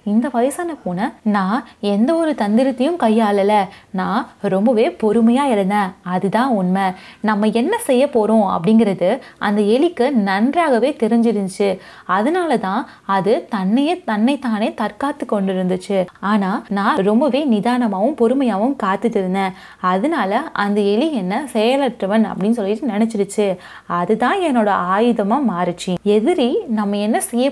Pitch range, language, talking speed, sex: 200-250 Hz, Tamil, 115 wpm, female